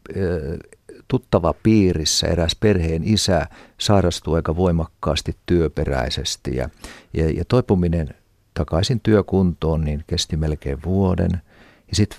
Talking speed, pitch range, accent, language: 100 wpm, 80-100 Hz, native, Finnish